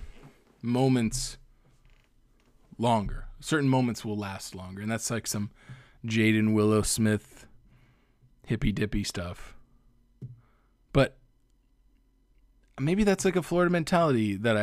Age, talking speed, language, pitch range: 20-39, 105 wpm, English, 110-135 Hz